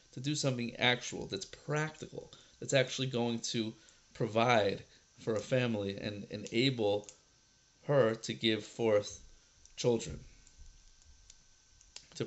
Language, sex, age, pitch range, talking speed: English, male, 40-59, 105-130 Hz, 110 wpm